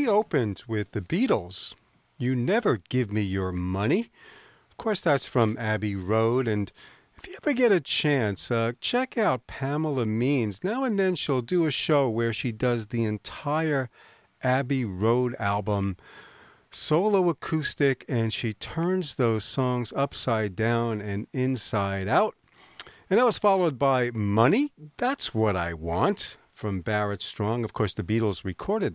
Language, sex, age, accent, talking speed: English, male, 40-59, American, 150 wpm